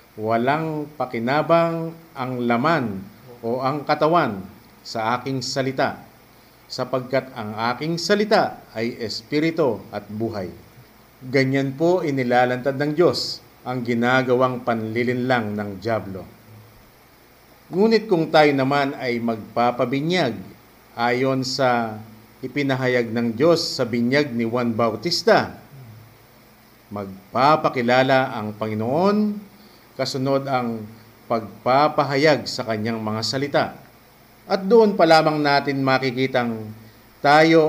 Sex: male